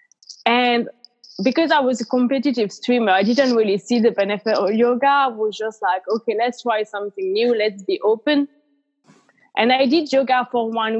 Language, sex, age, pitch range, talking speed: English, female, 20-39, 210-250 Hz, 180 wpm